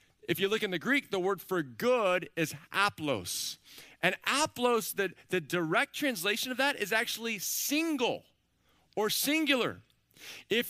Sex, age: male, 40-59